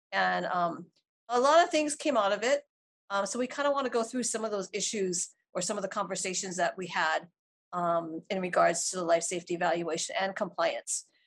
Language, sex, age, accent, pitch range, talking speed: English, female, 40-59, American, 185-240 Hz, 220 wpm